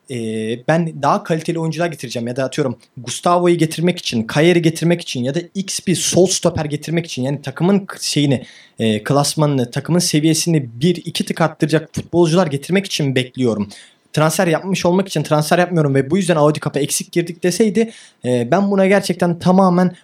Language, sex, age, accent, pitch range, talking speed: Turkish, male, 30-49, native, 140-190 Hz, 165 wpm